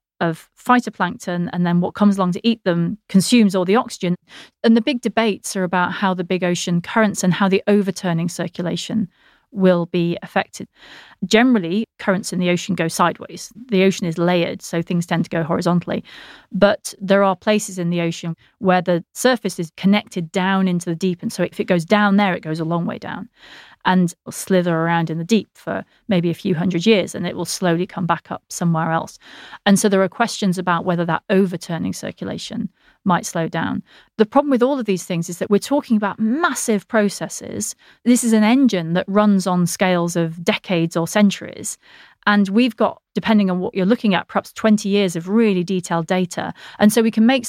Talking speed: 200 wpm